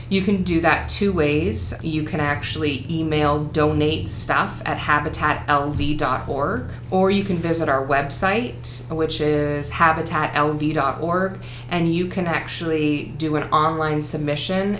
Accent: American